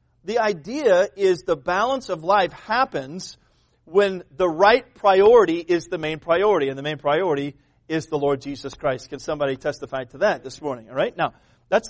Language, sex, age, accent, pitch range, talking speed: English, male, 40-59, American, 155-210 Hz, 180 wpm